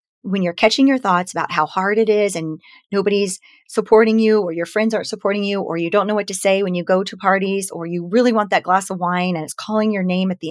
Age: 30-49